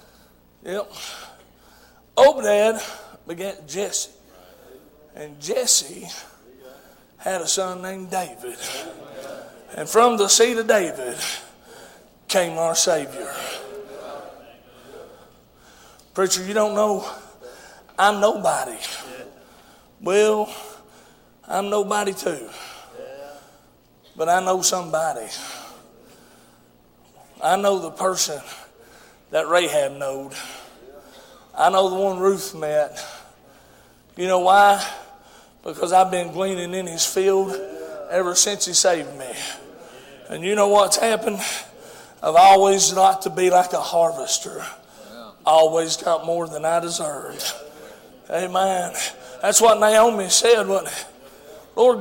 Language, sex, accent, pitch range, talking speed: English, male, American, 170-210 Hz, 105 wpm